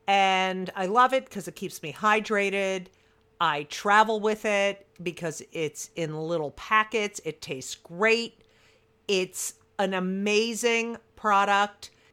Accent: American